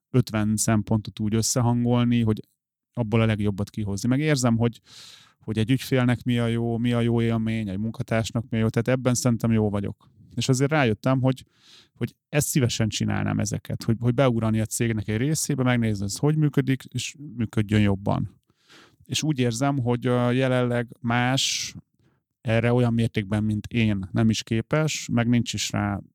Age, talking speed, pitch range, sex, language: 30-49, 170 wpm, 110-130 Hz, male, Hungarian